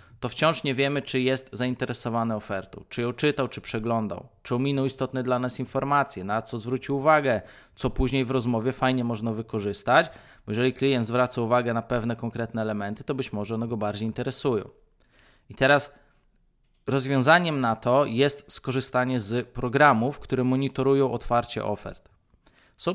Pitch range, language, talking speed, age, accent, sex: 115-135 Hz, Polish, 155 wpm, 20-39, native, male